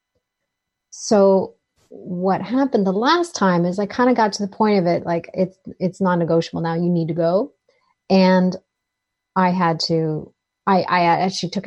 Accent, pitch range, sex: American, 165-190 Hz, female